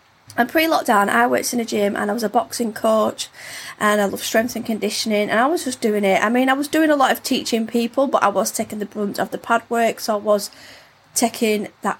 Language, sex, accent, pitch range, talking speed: English, female, British, 205-255 Hz, 255 wpm